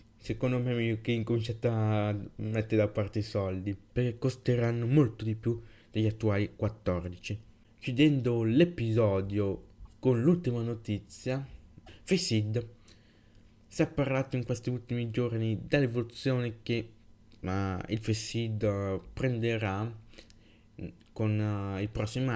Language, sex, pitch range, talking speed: Italian, male, 105-120 Hz, 115 wpm